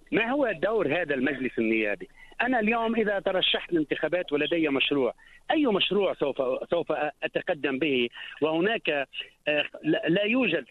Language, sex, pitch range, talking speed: English, male, 165-225 Hz, 120 wpm